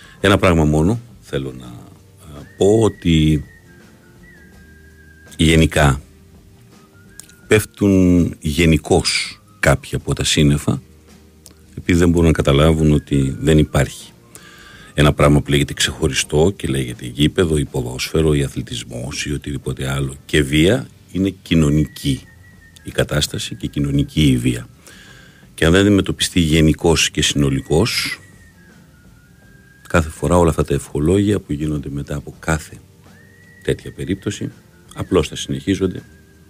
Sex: male